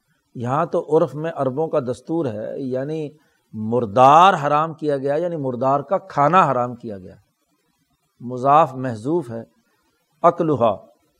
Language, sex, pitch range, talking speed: Urdu, male, 130-170 Hz, 130 wpm